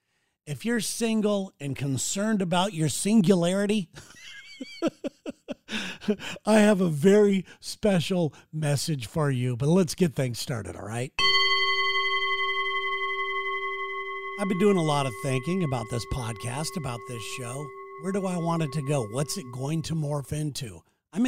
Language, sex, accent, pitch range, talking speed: English, male, American, 140-185 Hz, 140 wpm